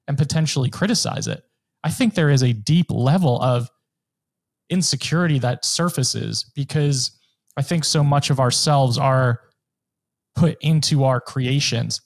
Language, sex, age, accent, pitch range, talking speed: English, male, 30-49, American, 125-150 Hz, 130 wpm